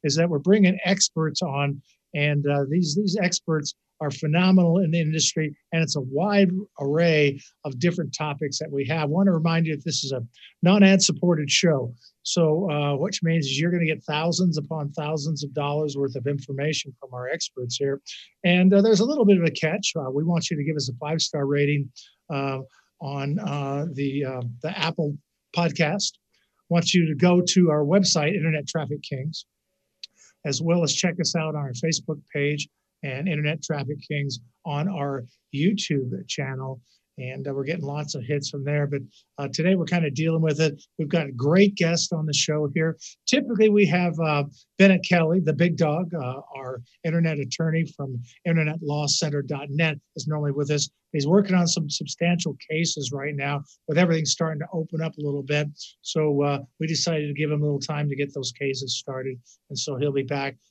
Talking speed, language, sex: 200 wpm, English, male